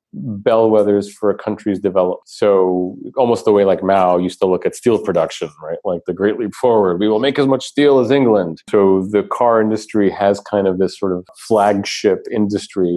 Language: English